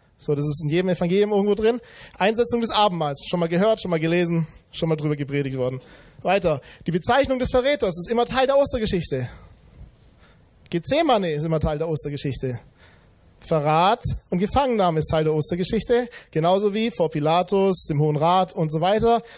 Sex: male